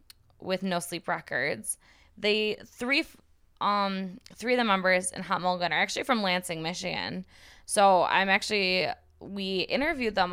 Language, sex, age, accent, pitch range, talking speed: English, female, 10-29, American, 160-195 Hz, 145 wpm